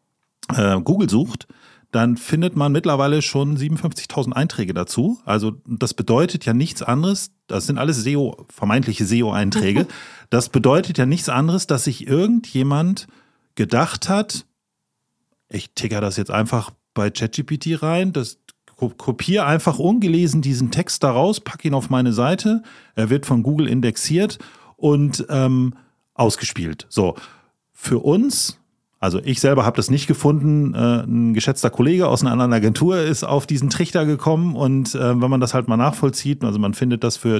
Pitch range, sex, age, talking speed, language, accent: 120-155 Hz, male, 40-59, 155 wpm, German, German